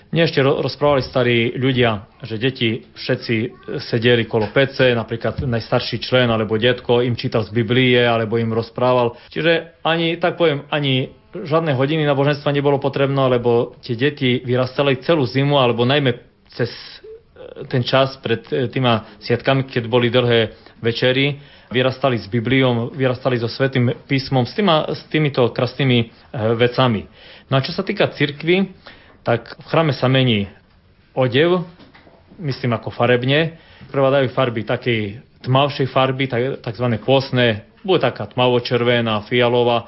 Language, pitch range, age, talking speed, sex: Slovak, 120-140 Hz, 30-49, 130 wpm, male